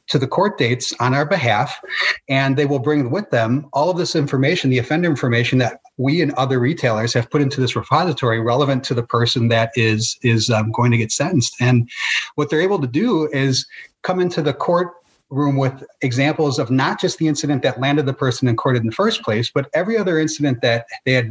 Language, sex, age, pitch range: English, male, 30-49, 120-150 Hz